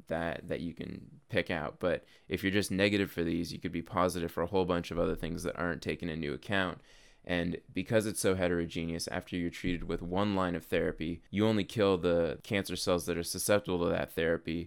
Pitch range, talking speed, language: 85-100 Hz, 220 wpm, English